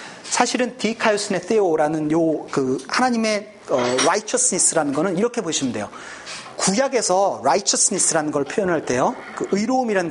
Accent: native